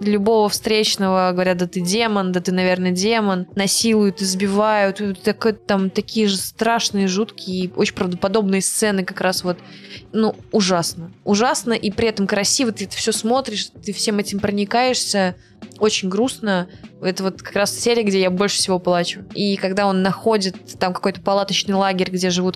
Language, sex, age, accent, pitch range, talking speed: Russian, female, 20-39, native, 180-205 Hz, 160 wpm